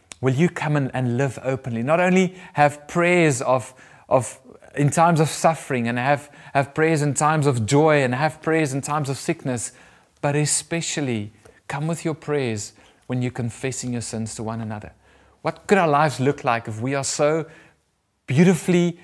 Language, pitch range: English, 125-160 Hz